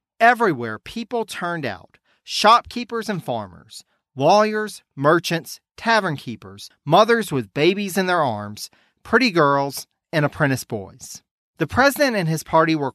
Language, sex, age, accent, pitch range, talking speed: English, male, 40-59, American, 130-200 Hz, 130 wpm